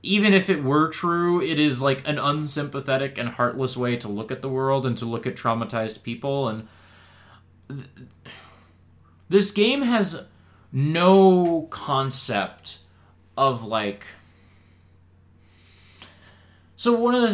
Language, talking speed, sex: English, 115 wpm, male